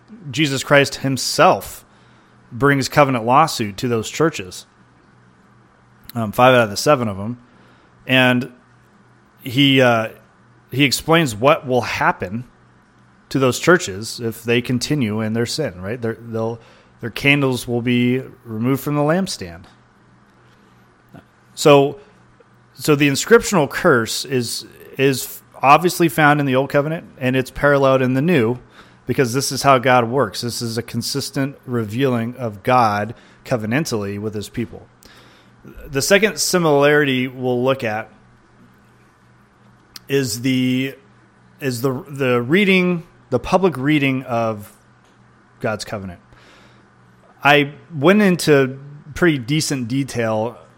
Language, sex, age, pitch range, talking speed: French, male, 30-49, 115-140 Hz, 125 wpm